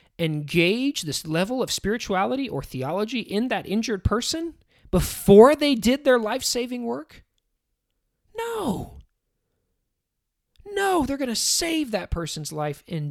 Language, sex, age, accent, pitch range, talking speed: English, male, 40-59, American, 125-205 Hz, 125 wpm